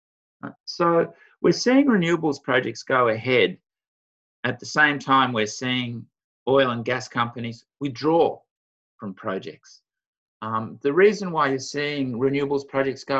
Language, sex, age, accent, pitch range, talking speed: English, male, 50-69, Australian, 110-145 Hz, 130 wpm